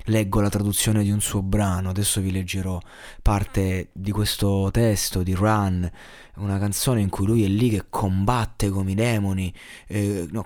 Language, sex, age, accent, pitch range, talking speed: Italian, male, 20-39, native, 95-115 Hz, 165 wpm